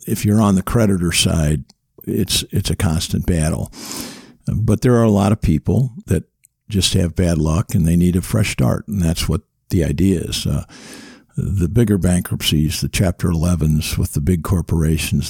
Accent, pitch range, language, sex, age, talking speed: American, 75-95 Hz, English, male, 50-69, 180 wpm